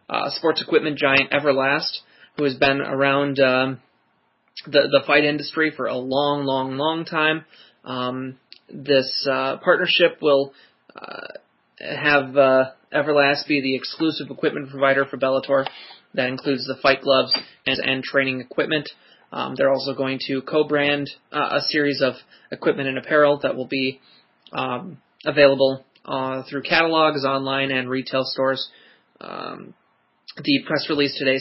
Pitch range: 135-145 Hz